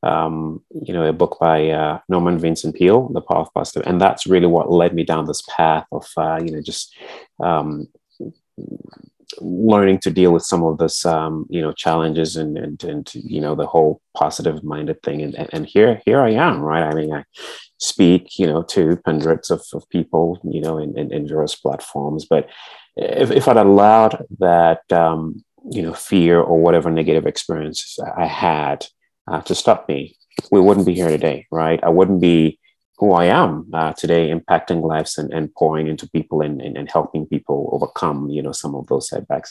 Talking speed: 195 wpm